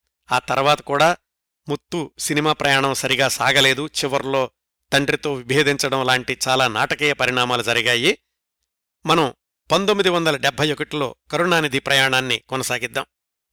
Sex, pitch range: male, 130-165 Hz